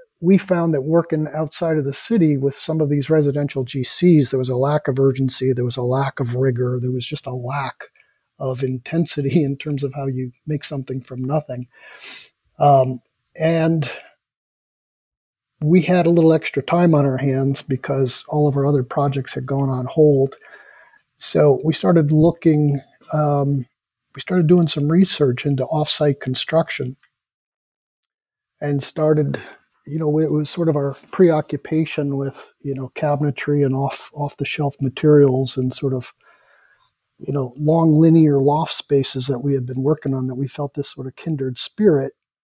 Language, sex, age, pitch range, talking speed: English, male, 50-69, 135-155 Hz, 165 wpm